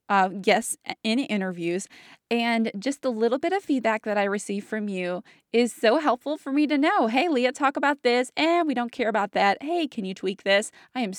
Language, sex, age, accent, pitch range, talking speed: English, female, 20-39, American, 195-255 Hz, 225 wpm